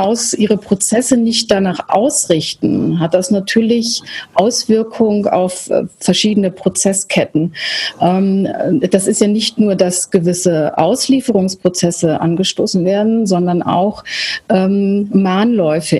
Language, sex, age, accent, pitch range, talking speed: German, female, 30-49, German, 175-210 Hz, 100 wpm